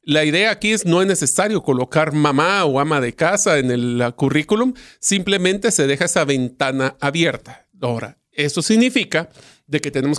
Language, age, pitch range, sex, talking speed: Spanish, 40-59, 135-180 Hz, male, 165 wpm